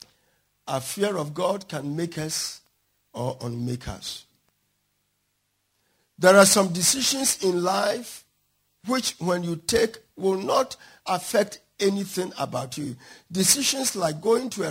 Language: English